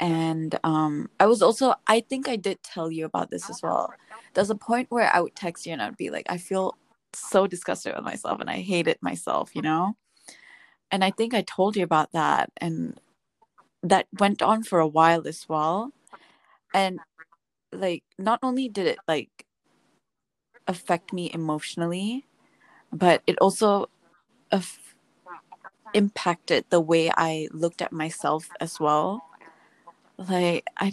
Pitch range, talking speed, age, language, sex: 165-215 Hz, 155 wpm, 20-39, English, female